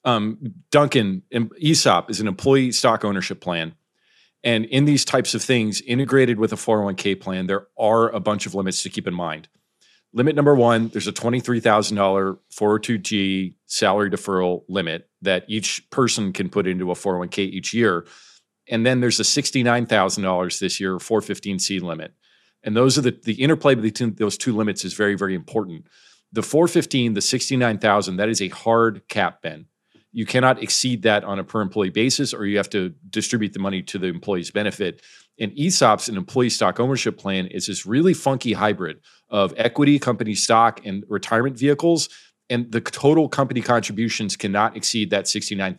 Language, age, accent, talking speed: English, 40-59, American, 175 wpm